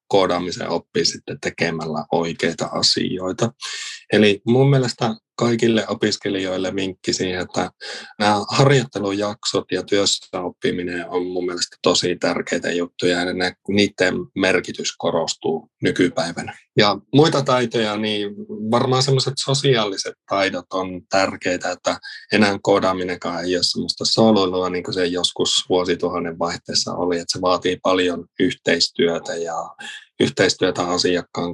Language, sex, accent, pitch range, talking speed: Finnish, male, native, 90-110 Hz, 115 wpm